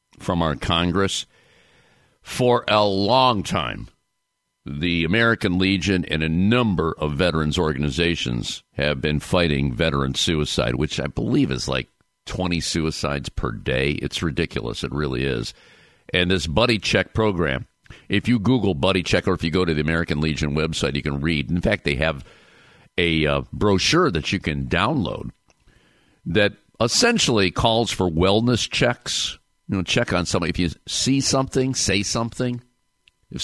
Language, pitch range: English, 75-105 Hz